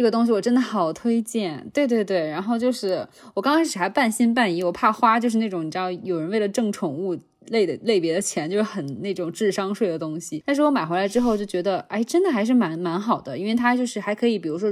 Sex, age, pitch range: female, 20-39, 165-210 Hz